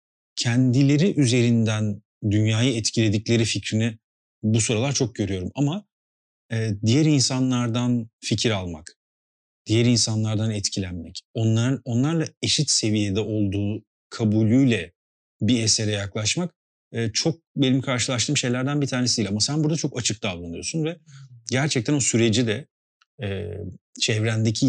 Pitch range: 105-135 Hz